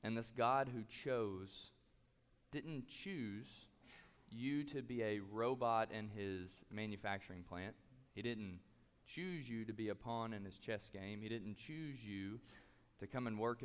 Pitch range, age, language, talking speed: 100-125 Hz, 20-39, English, 160 wpm